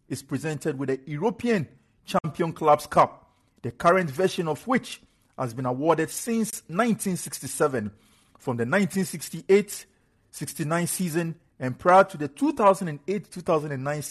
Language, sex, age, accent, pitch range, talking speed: English, male, 50-69, Nigerian, 130-185 Hz, 115 wpm